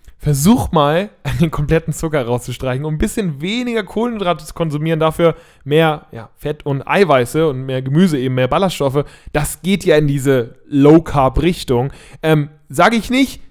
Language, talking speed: German, 155 wpm